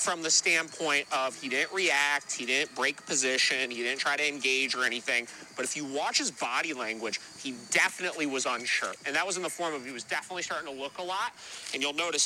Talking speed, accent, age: 230 wpm, American, 30-49